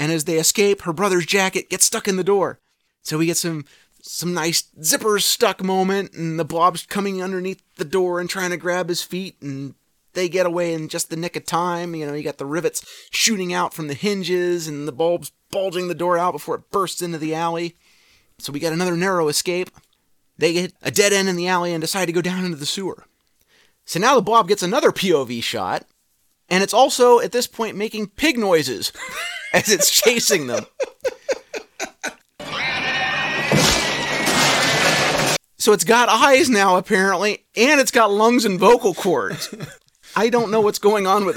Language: English